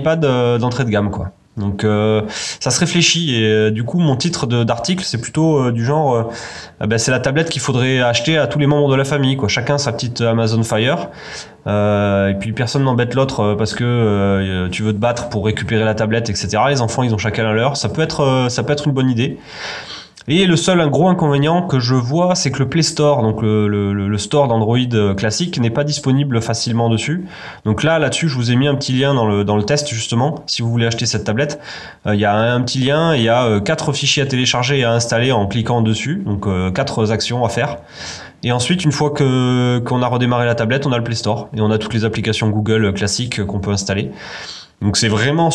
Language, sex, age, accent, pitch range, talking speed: French, male, 20-39, French, 110-140 Hz, 240 wpm